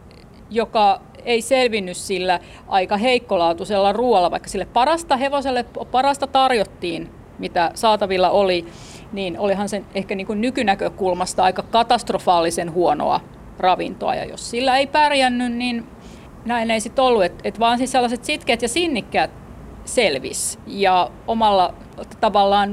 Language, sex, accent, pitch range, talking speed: Finnish, female, native, 190-240 Hz, 125 wpm